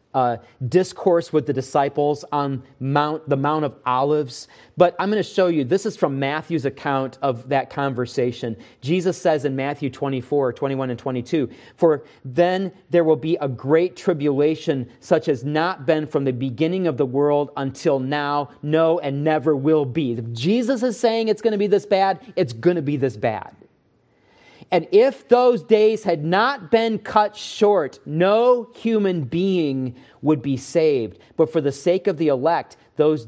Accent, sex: American, male